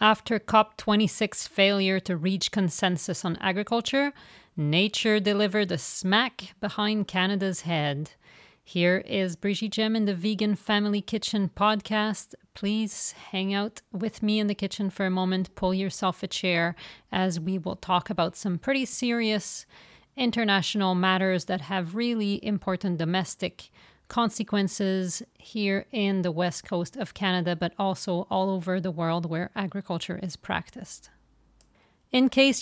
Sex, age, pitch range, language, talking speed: female, 40-59, 185-215 Hz, English, 140 wpm